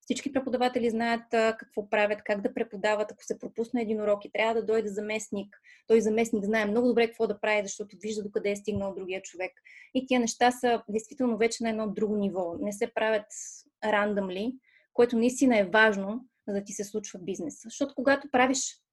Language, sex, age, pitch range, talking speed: Bulgarian, female, 20-39, 205-240 Hz, 190 wpm